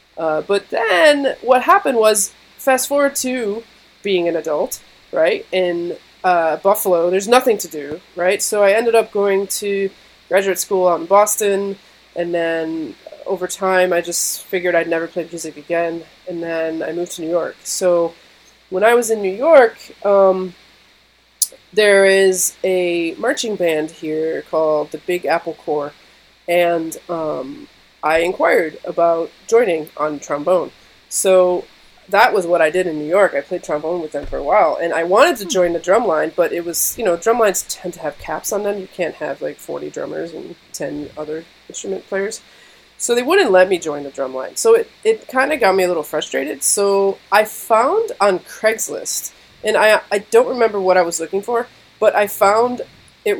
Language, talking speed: English, 180 wpm